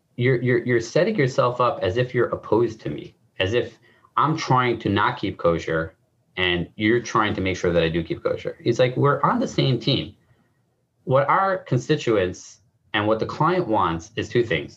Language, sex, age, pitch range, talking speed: English, male, 30-49, 100-130 Hz, 200 wpm